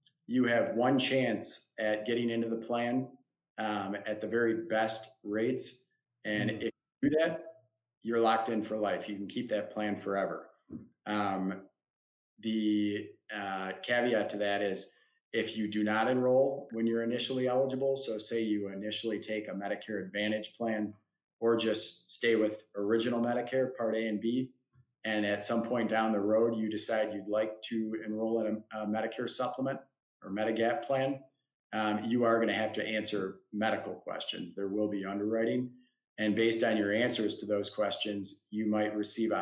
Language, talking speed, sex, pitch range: English, 170 wpm, male, 105-120 Hz